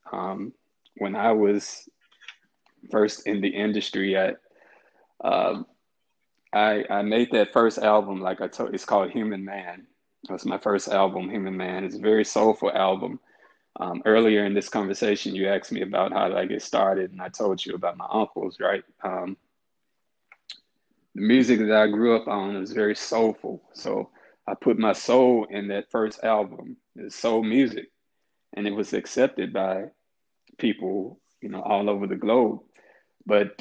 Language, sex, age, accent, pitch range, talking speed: English, male, 20-39, American, 100-125 Hz, 170 wpm